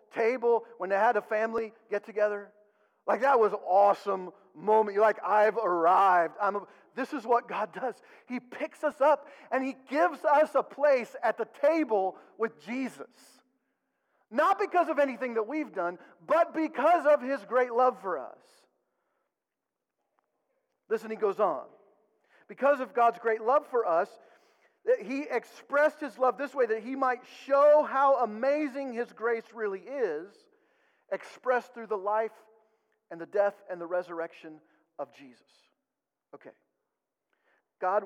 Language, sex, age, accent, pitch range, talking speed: English, male, 40-59, American, 205-275 Hz, 150 wpm